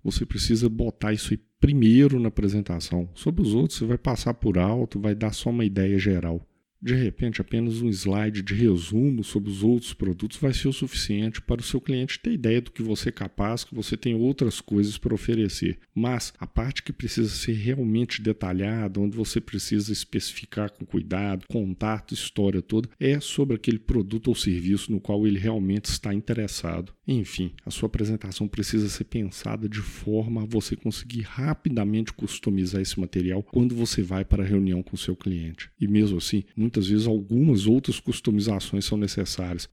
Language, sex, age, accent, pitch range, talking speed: Portuguese, male, 50-69, Brazilian, 100-115 Hz, 180 wpm